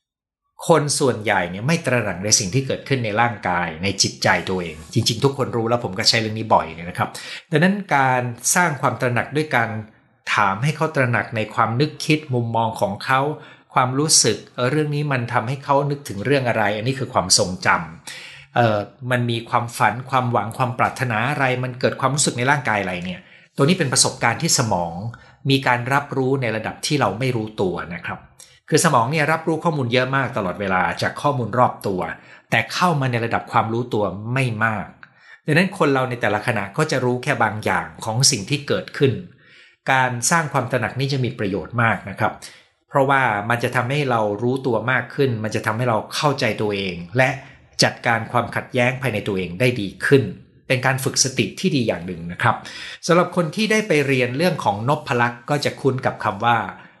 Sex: male